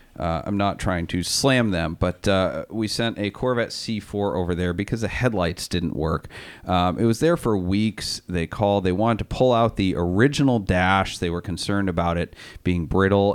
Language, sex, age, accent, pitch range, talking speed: English, male, 40-59, American, 95-120 Hz, 200 wpm